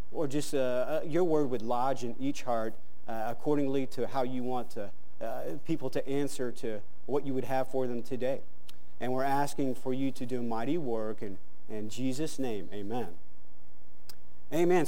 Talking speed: 180 wpm